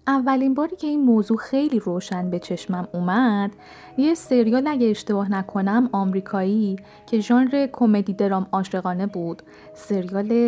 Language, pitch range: Persian, 190-250 Hz